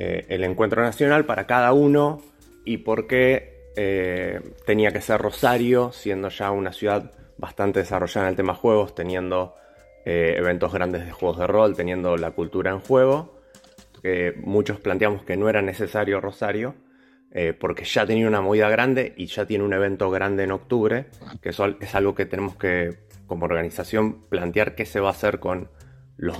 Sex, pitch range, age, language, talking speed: male, 95-125 Hz, 20-39, Spanish, 175 wpm